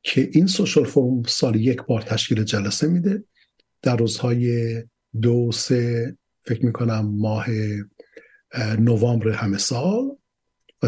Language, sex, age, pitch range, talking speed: Persian, male, 50-69, 115-145 Hz, 115 wpm